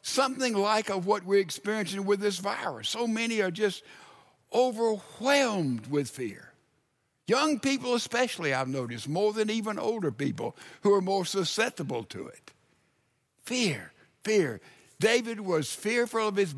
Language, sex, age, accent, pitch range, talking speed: English, male, 60-79, American, 155-210 Hz, 140 wpm